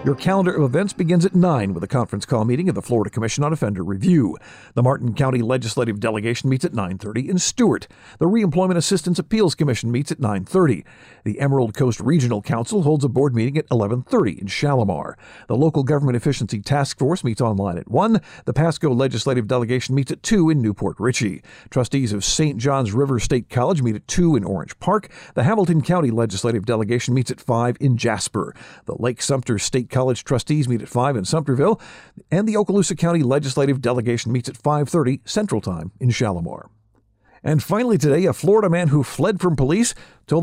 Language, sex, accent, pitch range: English, male, American, 120-160 Hz